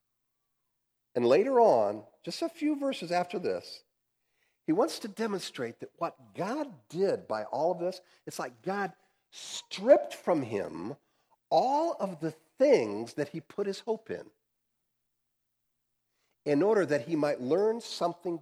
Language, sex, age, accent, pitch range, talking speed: English, male, 50-69, American, 150-230 Hz, 145 wpm